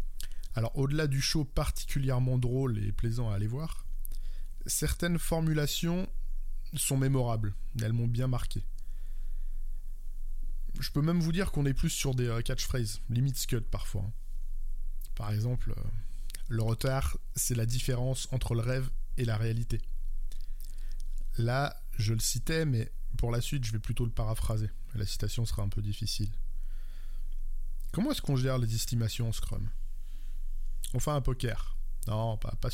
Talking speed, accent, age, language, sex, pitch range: 145 wpm, French, 20-39, French, male, 115-140 Hz